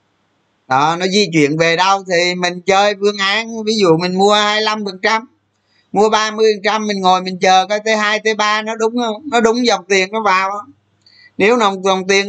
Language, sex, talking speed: Vietnamese, male, 195 wpm